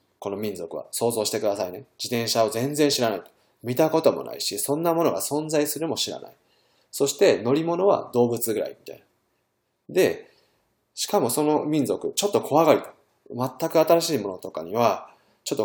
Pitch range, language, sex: 110-155 Hz, Japanese, male